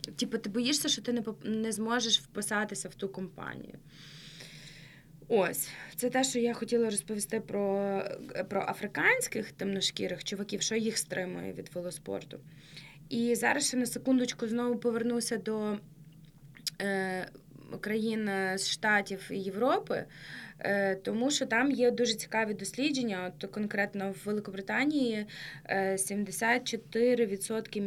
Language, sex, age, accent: Ukrainian, female, 20-39, native